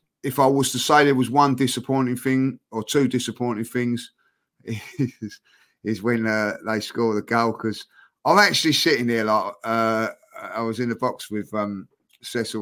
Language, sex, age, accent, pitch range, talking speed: English, male, 30-49, British, 110-145 Hz, 175 wpm